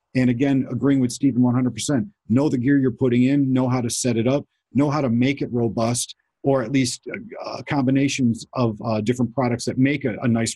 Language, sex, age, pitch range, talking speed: English, male, 50-69, 120-140 Hz, 215 wpm